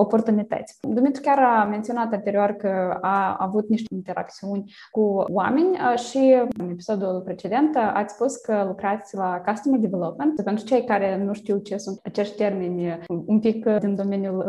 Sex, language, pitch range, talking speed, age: female, Romanian, 195-240 Hz, 155 wpm, 20-39